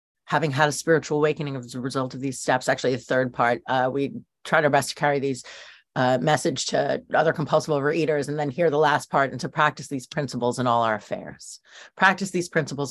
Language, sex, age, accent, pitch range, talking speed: English, female, 30-49, American, 125-150 Hz, 220 wpm